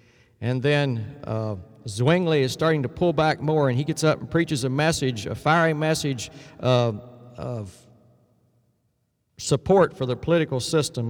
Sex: male